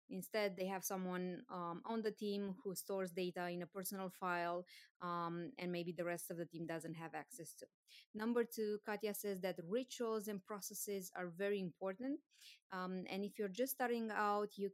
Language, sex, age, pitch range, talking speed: English, female, 20-39, 185-215 Hz, 185 wpm